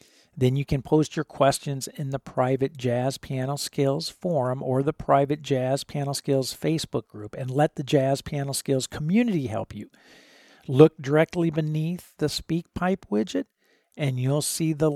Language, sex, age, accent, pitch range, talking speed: English, male, 50-69, American, 130-160 Hz, 165 wpm